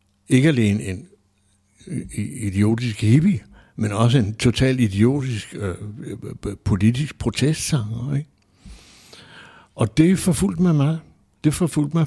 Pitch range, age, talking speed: 105-130 Hz, 60-79, 110 wpm